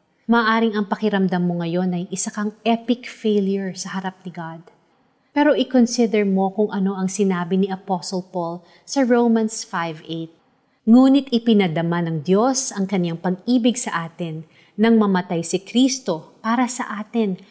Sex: female